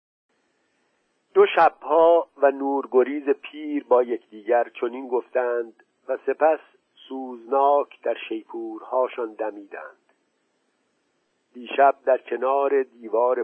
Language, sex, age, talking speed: Persian, male, 50-69, 85 wpm